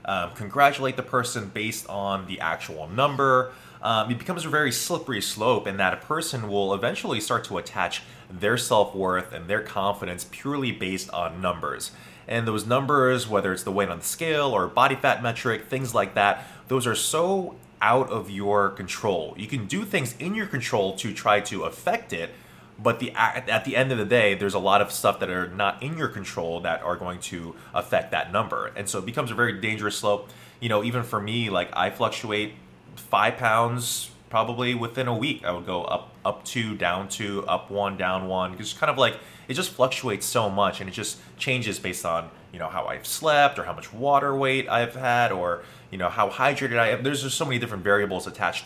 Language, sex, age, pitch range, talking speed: English, male, 20-39, 95-125 Hz, 210 wpm